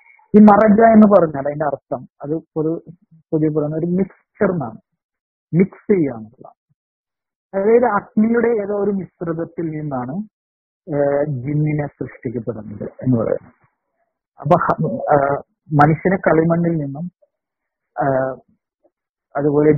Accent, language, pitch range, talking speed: native, Malayalam, 150-195 Hz, 90 wpm